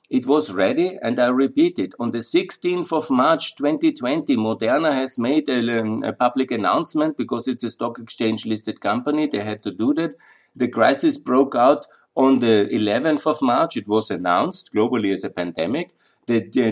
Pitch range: 110-155 Hz